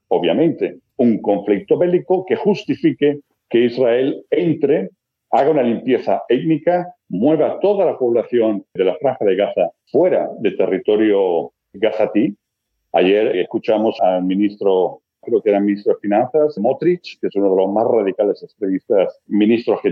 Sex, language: male, Spanish